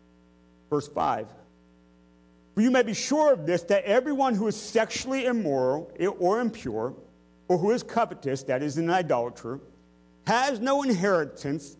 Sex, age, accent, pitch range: male, 50-69, American, 125-185 Hz